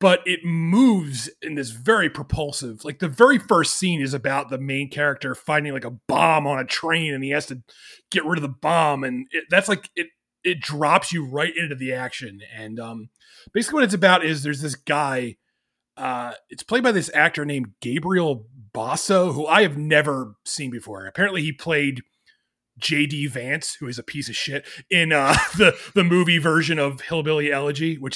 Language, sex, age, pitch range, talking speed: English, male, 30-49, 135-175 Hz, 195 wpm